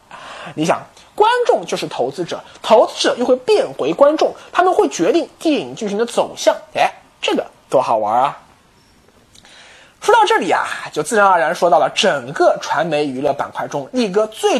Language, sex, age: Chinese, male, 20-39